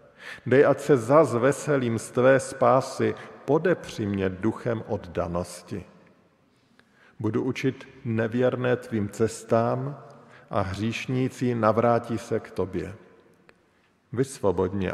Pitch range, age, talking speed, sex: 100-125 Hz, 50-69, 90 wpm, male